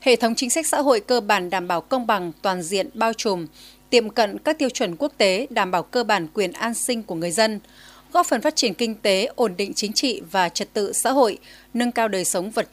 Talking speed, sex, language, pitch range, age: 250 wpm, female, Vietnamese, 195-245 Hz, 20-39